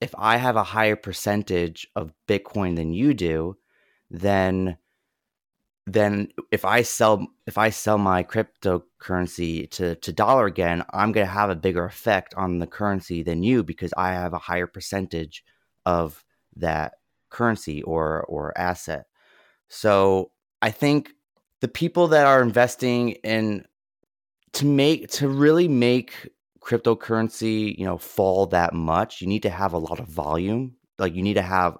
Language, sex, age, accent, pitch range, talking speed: English, male, 30-49, American, 85-110 Hz, 155 wpm